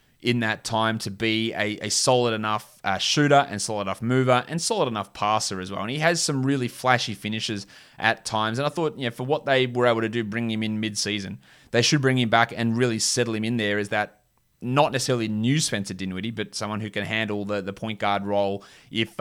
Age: 20-39